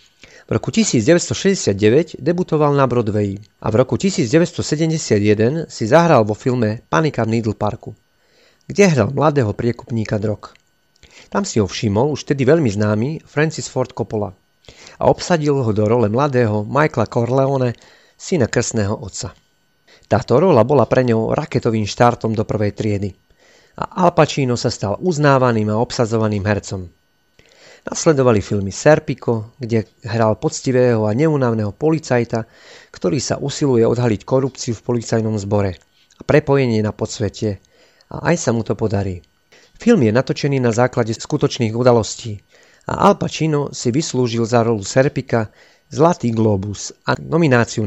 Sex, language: male, Slovak